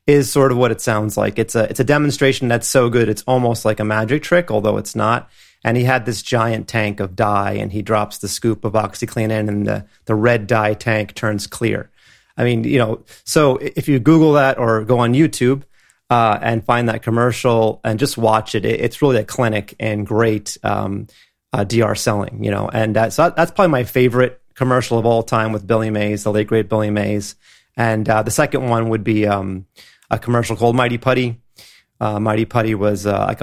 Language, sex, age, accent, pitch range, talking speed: English, male, 30-49, American, 105-120 Hz, 215 wpm